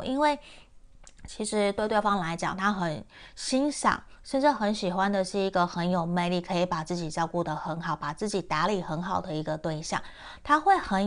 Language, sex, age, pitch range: Chinese, female, 20-39, 175-210 Hz